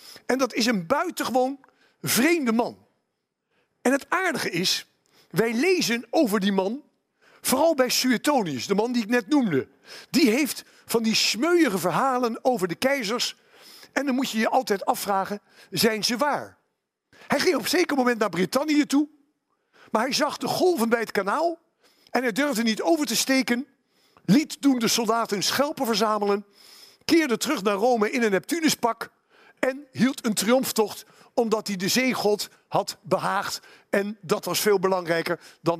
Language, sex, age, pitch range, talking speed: Dutch, male, 50-69, 215-280 Hz, 165 wpm